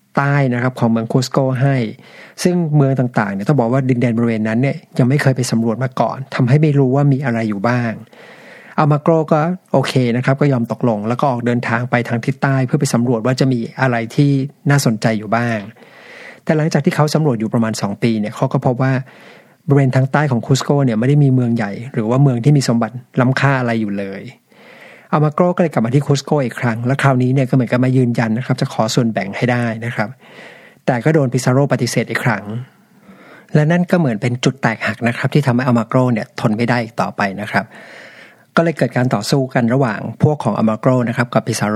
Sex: male